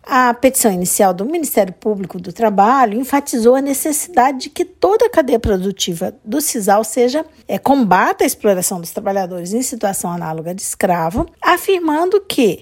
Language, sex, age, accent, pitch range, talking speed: Portuguese, female, 50-69, Brazilian, 200-330 Hz, 150 wpm